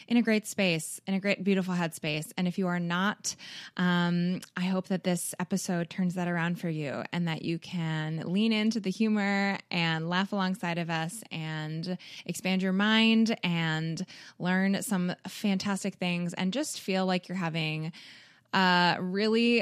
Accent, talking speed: American, 170 wpm